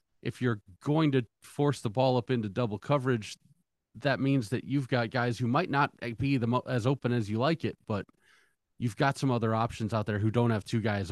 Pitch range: 110-130 Hz